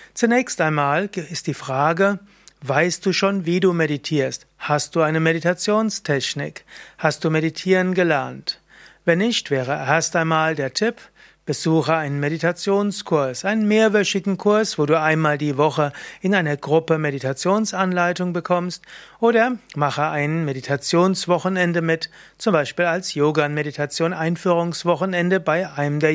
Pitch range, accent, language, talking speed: 150-185 Hz, German, German, 125 wpm